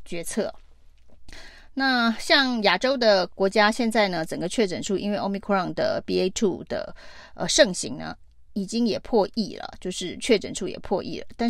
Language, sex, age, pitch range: Chinese, female, 30-49, 185-225 Hz